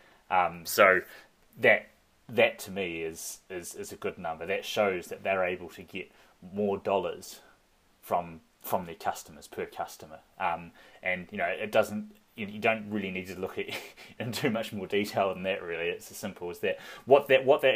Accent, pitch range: Australian, 90-105 Hz